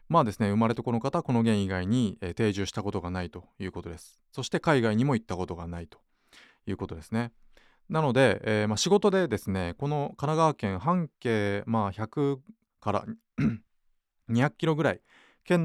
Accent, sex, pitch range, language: native, male, 95-135 Hz, Japanese